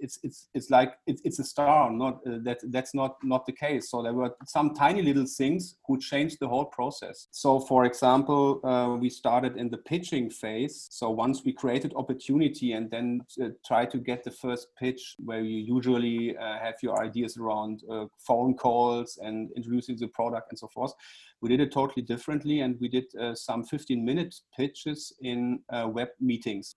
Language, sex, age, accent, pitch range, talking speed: English, male, 40-59, German, 115-135 Hz, 195 wpm